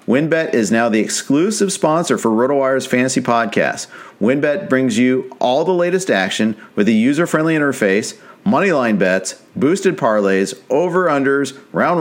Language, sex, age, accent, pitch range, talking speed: English, male, 40-59, American, 125-170 Hz, 135 wpm